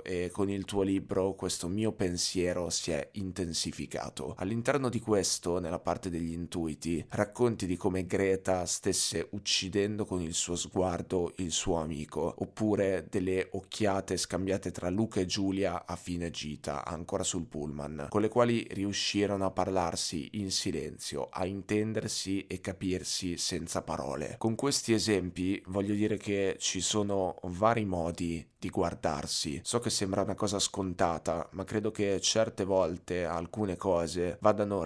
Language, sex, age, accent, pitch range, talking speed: Italian, male, 20-39, native, 90-105 Hz, 145 wpm